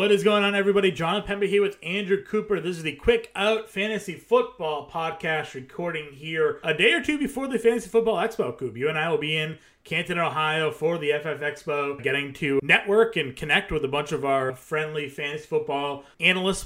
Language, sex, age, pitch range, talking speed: English, male, 30-49, 145-185 Hz, 205 wpm